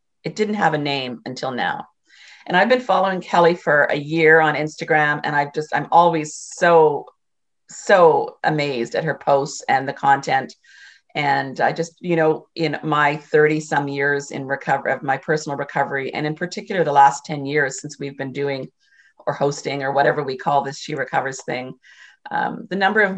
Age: 40-59